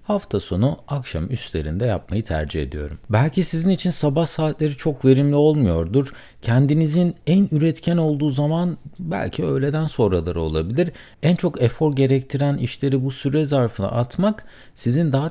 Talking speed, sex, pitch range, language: 135 wpm, male, 95-150 Hz, Turkish